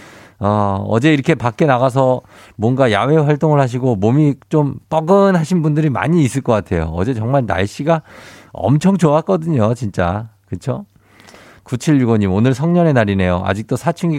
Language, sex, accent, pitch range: Korean, male, native, 100-145 Hz